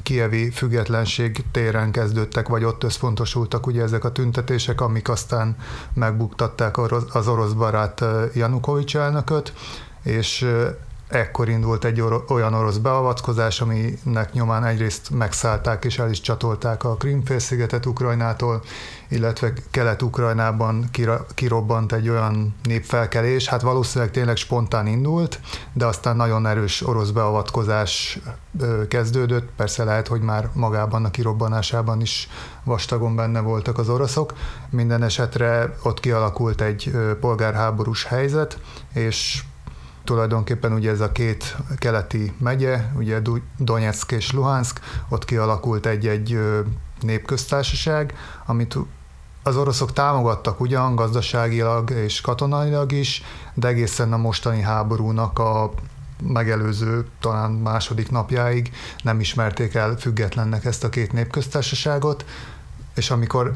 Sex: male